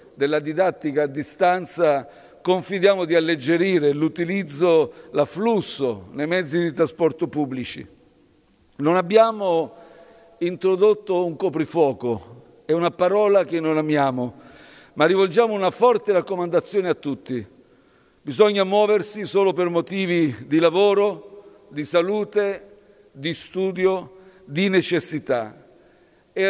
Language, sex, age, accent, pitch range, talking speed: Italian, male, 50-69, native, 155-190 Hz, 105 wpm